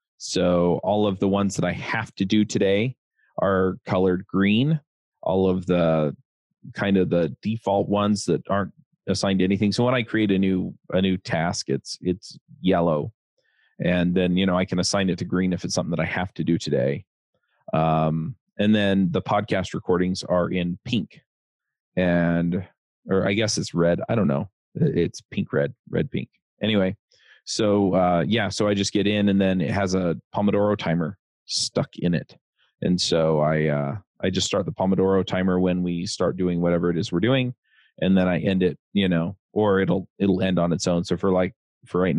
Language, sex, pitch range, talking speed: English, male, 85-100 Hz, 195 wpm